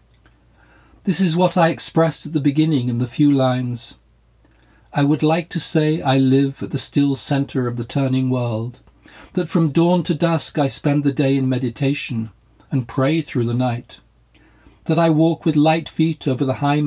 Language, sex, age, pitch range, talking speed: English, male, 50-69, 125-155 Hz, 185 wpm